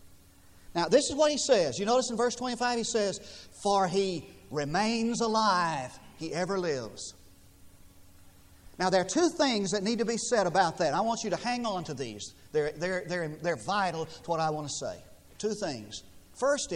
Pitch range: 150-235 Hz